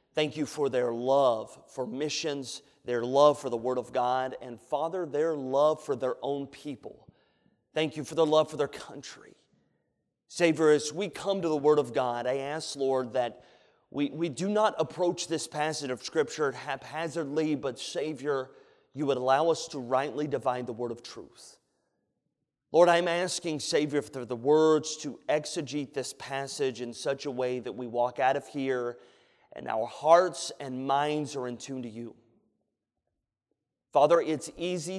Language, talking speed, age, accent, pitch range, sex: English, 170 wpm, 30-49, American, 125-155 Hz, male